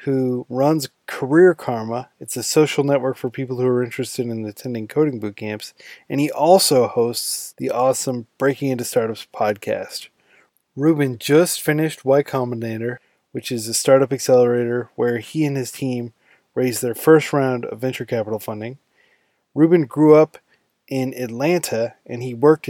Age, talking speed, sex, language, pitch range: 20-39, 155 wpm, male, English, 120-140 Hz